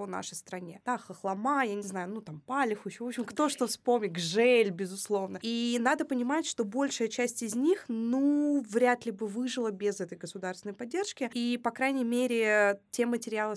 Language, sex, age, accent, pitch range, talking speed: Russian, female, 20-39, native, 200-240 Hz, 180 wpm